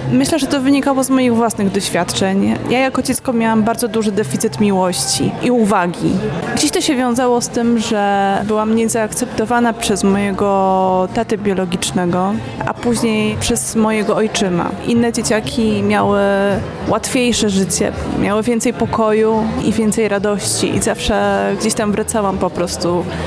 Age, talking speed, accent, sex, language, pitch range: 20-39, 140 wpm, native, female, Polish, 205-240 Hz